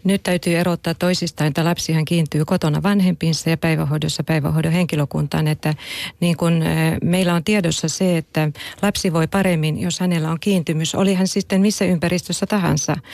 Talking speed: 150 wpm